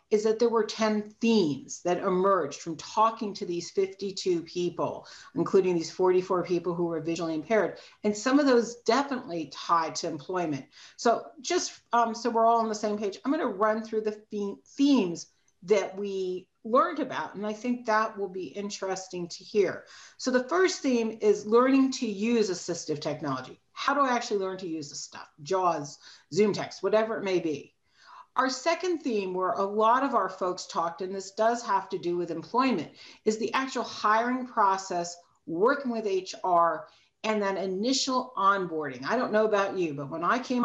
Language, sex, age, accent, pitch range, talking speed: English, female, 40-59, American, 175-235 Hz, 185 wpm